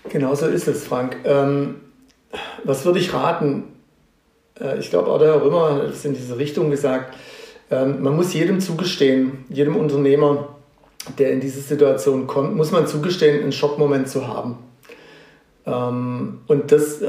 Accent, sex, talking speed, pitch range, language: German, male, 145 wpm, 140-175 Hz, German